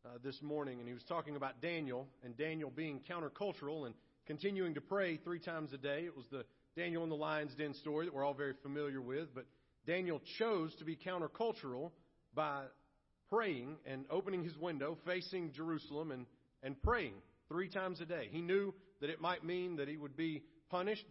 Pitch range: 145-175 Hz